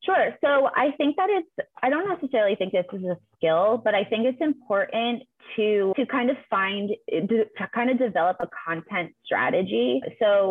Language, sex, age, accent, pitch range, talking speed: English, female, 20-39, American, 180-225 Hz, 185 wpm